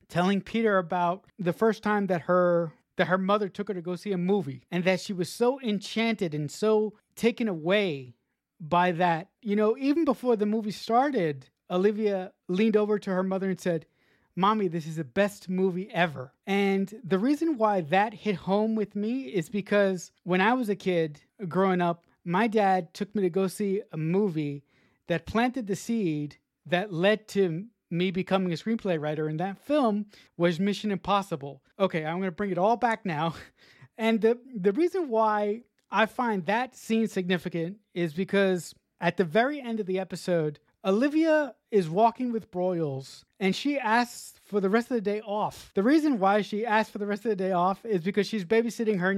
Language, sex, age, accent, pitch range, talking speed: English, male, 30-49, American, 175-215 Hz, 190 wpm